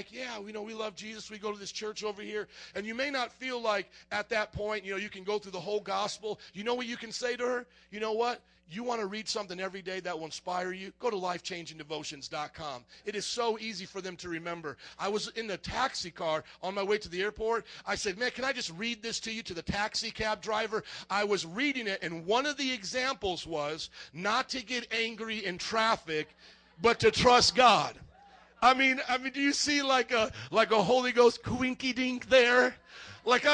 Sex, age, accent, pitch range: male, 40-59, American, 180-240 Hz